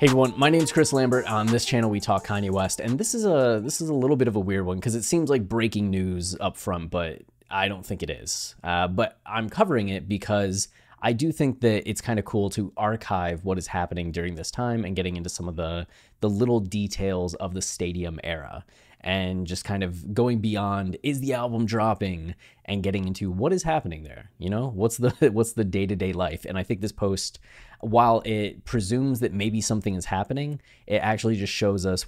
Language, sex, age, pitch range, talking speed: English, male, 20-39, 90-115 Hz, 225 wpm